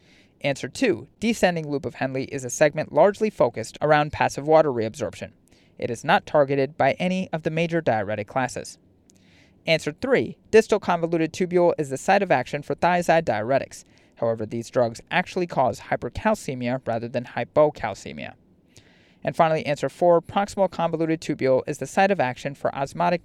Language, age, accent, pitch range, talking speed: English, 30-49, American, 135-180 Hz, 160 wpm